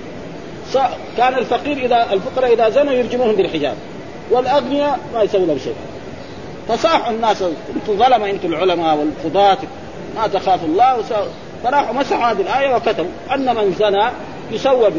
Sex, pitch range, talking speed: male, 190-275 Hz, 130 wpm